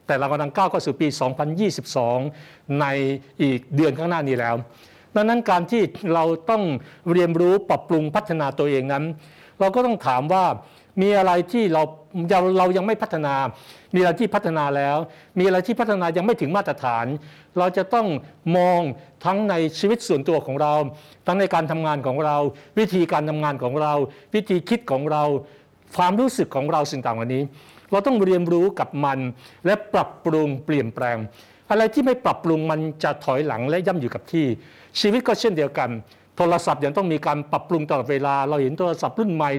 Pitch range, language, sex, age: 140-185 Hz, Thai, male, 60-79